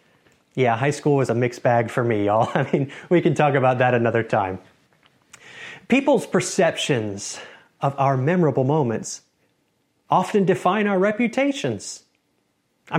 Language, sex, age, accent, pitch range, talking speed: English, male, 40-59, American, 130-185 Hz, 140 wpm